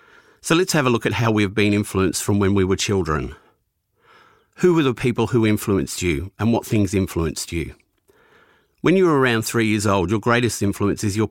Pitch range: 95-125 Hz